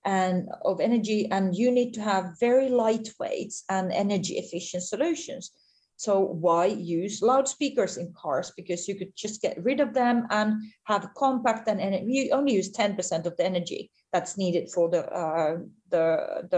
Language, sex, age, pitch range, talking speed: English, female, 30-49, 180-225 Hz, 165 wpm